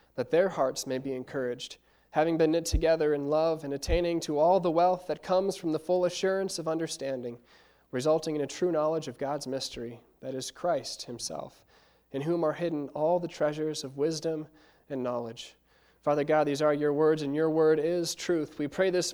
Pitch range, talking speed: 145-180 Hz, 200 wpm